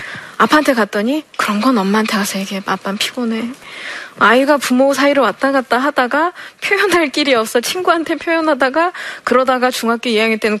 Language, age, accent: Korean, 20-39, native